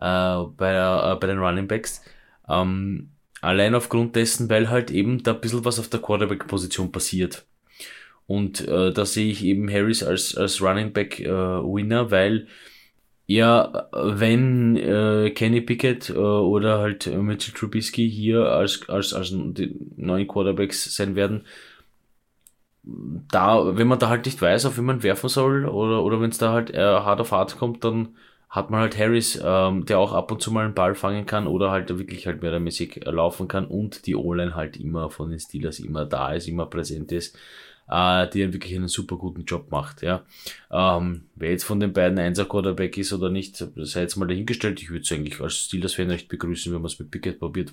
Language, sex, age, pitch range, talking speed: German, male, 20-39, 90-110 Hz, 180 wpm